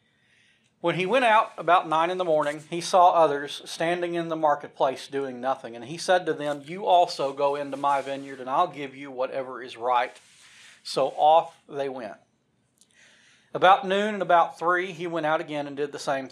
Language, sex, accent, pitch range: English, male, American, 140-175 Hz